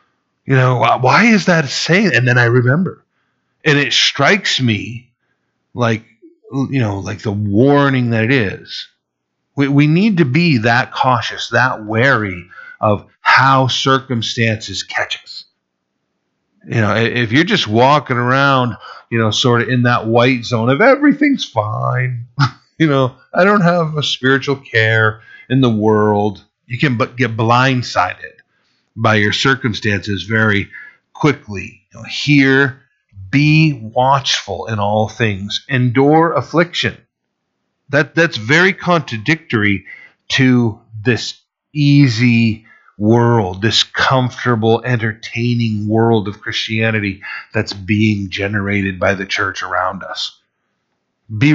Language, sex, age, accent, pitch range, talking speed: English, male, 50-69, American, 110-140 Hz, 125 wpm